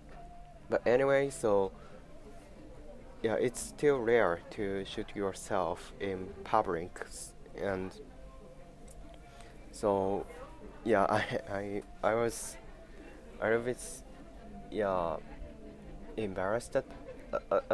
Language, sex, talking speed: English, male, 90 wpm